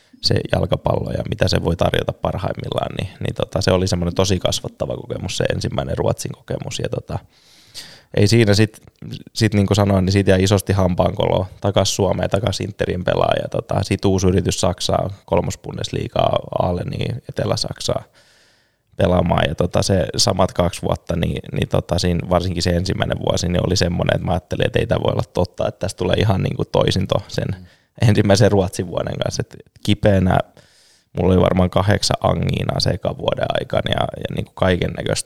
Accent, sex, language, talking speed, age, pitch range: native, male, Finnish, 170 wpm, 20-39, 95-105 Hz